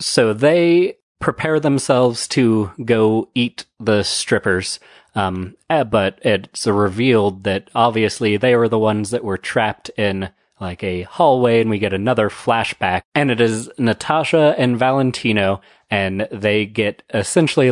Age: 30-49